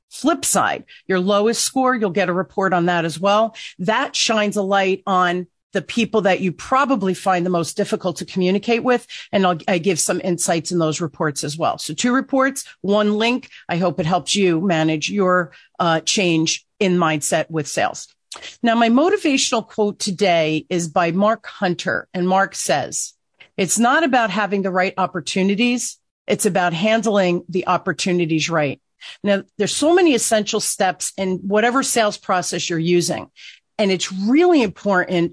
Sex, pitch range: female, 175-225 Hz